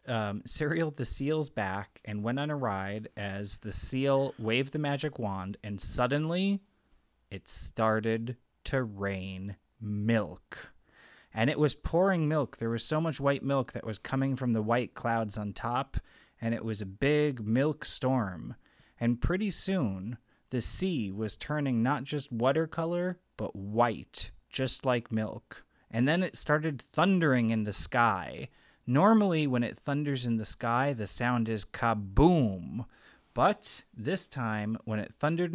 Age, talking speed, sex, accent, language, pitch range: 30-49, 155 wpm, male, American, English, 110-150 Hz